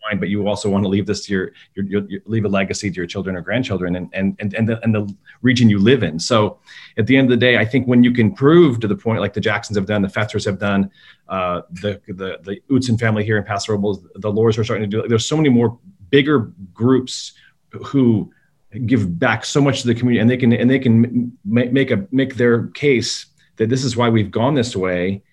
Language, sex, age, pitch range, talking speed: English, male, 30-49, 100-125 Hz, 260 wpm